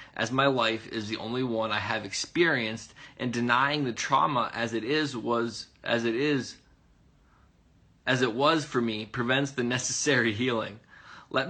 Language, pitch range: English, 115-145 Hz